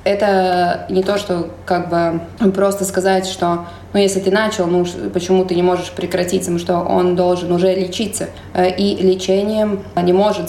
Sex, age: female, 20-39